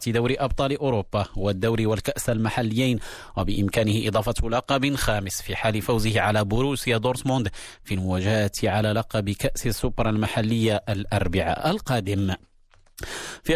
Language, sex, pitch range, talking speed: Arabic, male, 105-130 Hz, 115 wpm